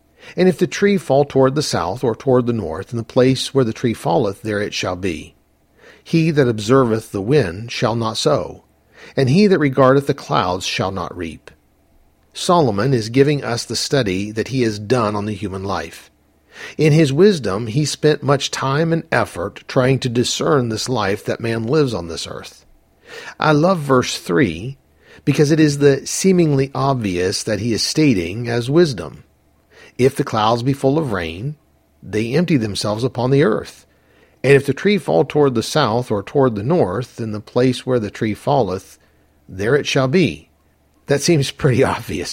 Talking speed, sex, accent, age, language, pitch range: 185 wpm, male, American, 50-69, English, 105-145 Hz